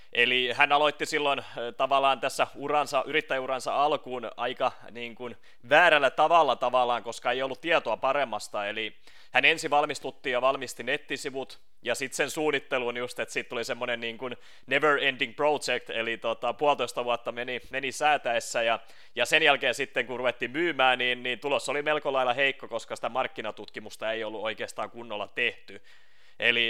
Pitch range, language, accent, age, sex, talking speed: 115-145 Hz, Finnish, native, 30-49, male, 160 wpm